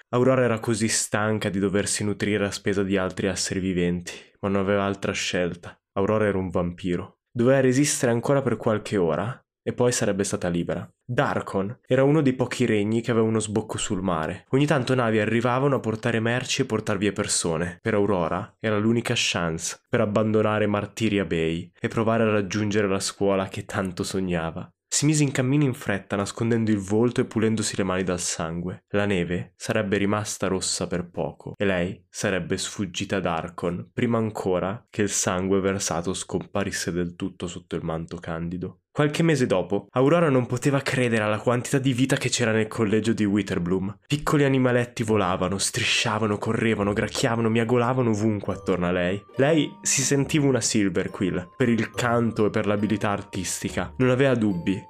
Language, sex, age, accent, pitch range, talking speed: Italian, male, 20-39, native, 95-120 Hz, 175 wpm